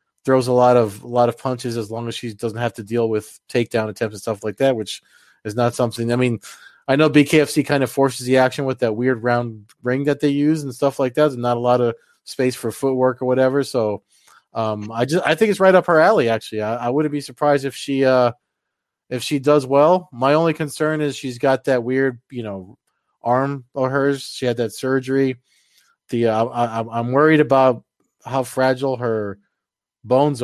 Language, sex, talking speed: English, male, 215 wpm